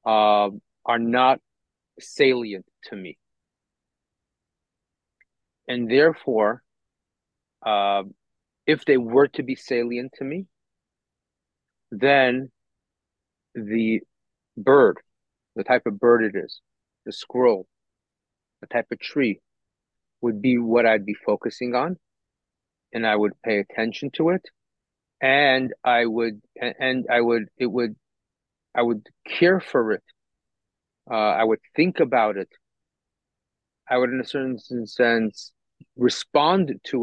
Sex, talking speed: male, 120 wpm